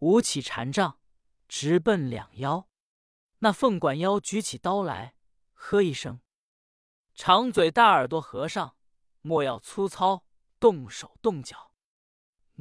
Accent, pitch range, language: native, 135-210 Hz, Chinese